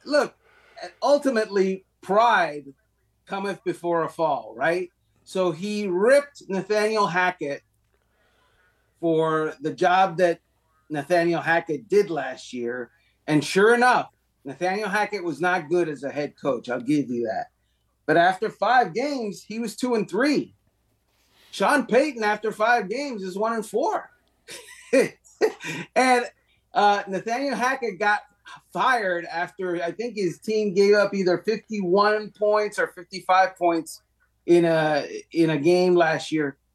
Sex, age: male, 30-49